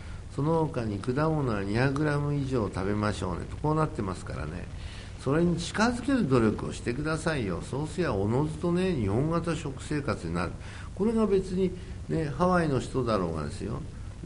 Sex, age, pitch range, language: male, 60-79, 95-145 Hz, Japanese